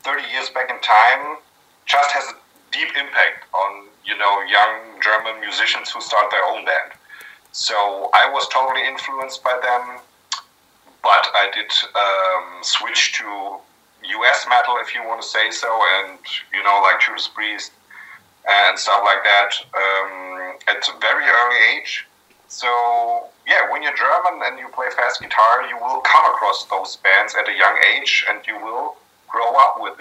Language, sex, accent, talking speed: English, male, German, 170 wpm